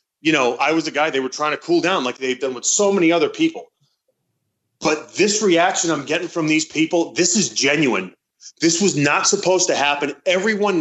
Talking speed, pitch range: 210 wpm, 140-185 Hz